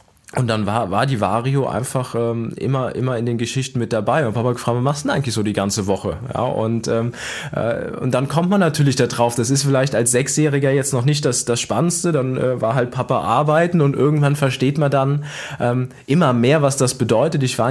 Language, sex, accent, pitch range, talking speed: German, male, German, 120-140 Hz, 230 wpm